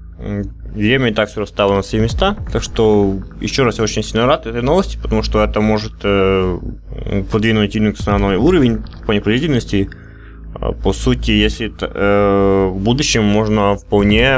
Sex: male